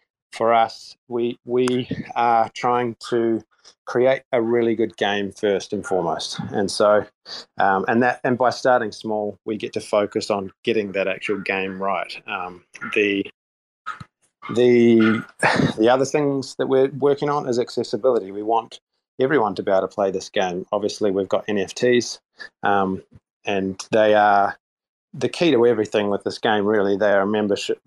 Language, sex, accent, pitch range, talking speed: English, male, Australian, 100-120 Hz, 160 wpm